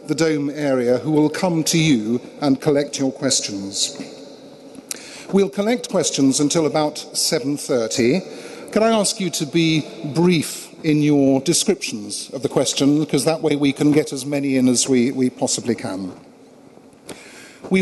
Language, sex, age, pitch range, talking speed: English, male, 50-69, 140-180 Hz, 160 wpm